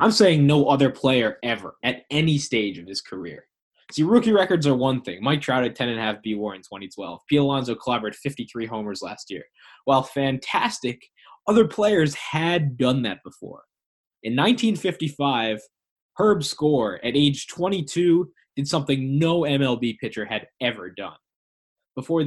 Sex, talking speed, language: male, 150 wpm, English